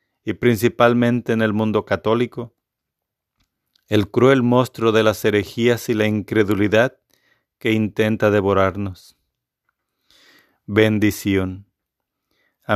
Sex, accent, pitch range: male, Mexican, 100-120 Hz